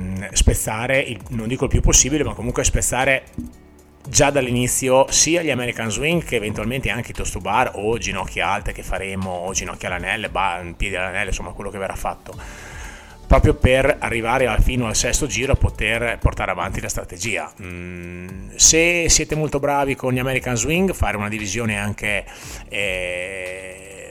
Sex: male